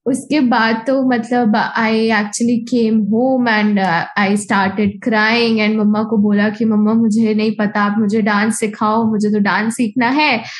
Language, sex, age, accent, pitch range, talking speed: Hindi, female, 10-29, native, 215-255 Hz, 175 wpm